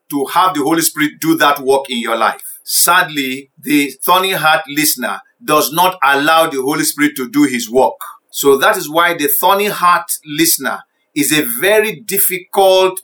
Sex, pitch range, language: male, 145-190 Hz, English